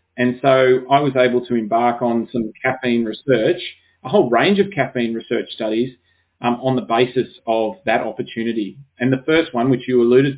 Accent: Australian